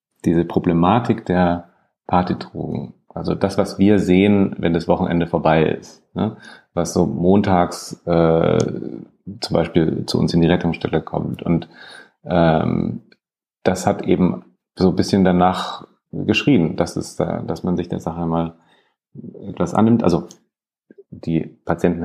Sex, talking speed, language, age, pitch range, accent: male, 140 wpm, German, 30-49, 80-90 Hz, German